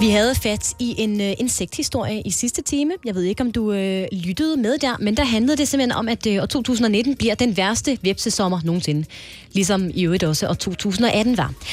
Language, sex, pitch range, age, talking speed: Danish, female, 200-270 Hz, 30-49, 215 wpm